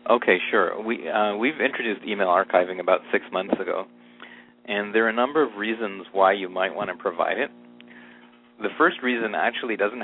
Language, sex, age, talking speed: English, male, 40-59, 185 wpm